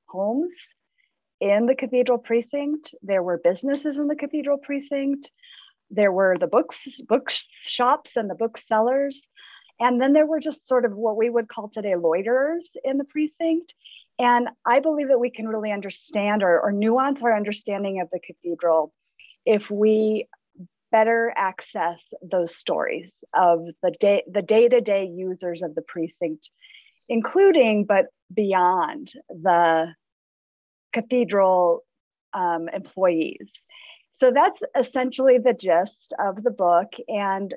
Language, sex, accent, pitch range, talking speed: English, female, American, 190-265 Hz, 135 wpm